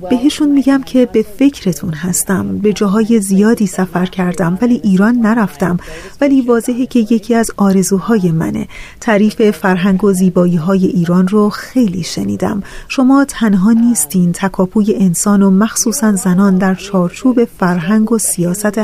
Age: 30-49